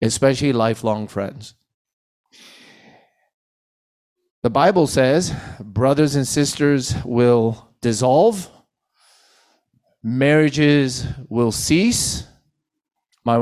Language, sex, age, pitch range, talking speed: English, male, 30-49, 110-135 Hz, 65 wpm